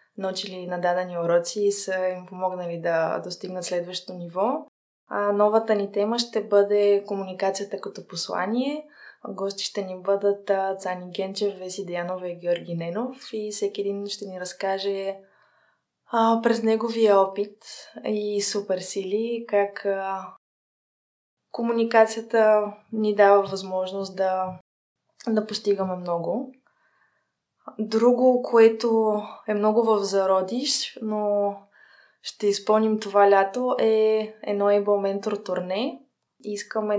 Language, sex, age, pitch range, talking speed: Bulgarian, female, 20-39, 190-220 Hz, 110 wpm